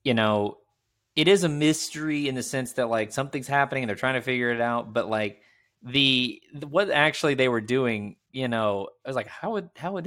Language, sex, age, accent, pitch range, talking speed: English, male, 20-39, American, 105-130 Hz, 225 wpm